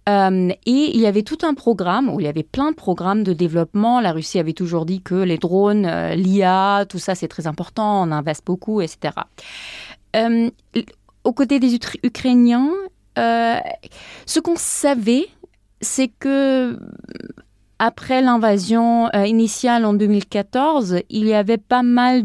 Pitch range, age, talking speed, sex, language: 190-240 Hz, 30-49, 150 wpm, female, French